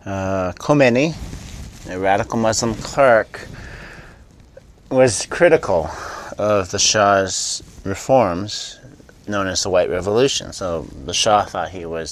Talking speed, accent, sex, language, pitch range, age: 115 wpm, American, male, English, 85-105 Hz, 30-49